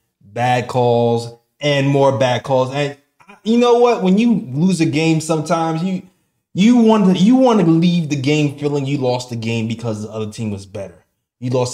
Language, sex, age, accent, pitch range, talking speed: English, male, 20-39, American, 120-160 Hz, 200 wpm